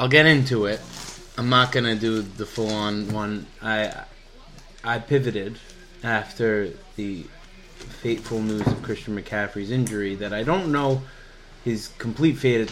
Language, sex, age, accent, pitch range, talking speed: English, male, 20-39, American, 105-135 Hz, 145 wpm